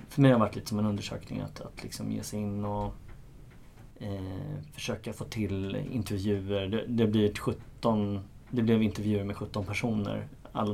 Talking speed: 175 wpm